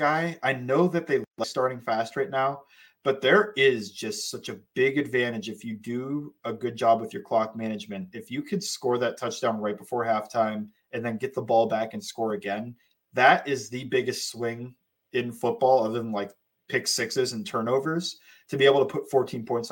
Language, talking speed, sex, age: English, 200 wpm, male, 20-39